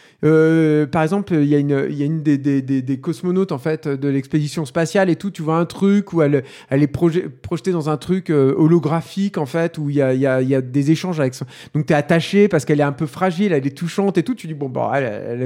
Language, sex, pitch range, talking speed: French, male, 145-200 Hz, 285 wpm